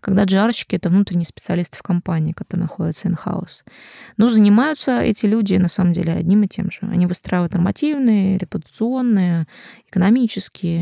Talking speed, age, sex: 150 wpm, 20-39, female